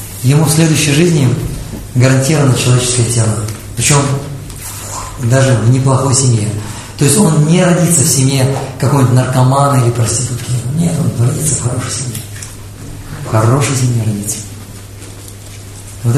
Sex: male